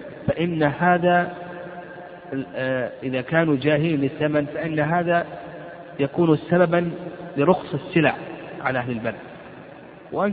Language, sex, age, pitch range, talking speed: Arabic, male, 50-69, 140-175 Hz, 95 wpm